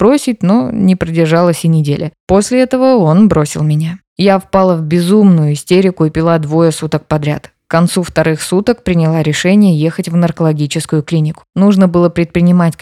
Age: 20-39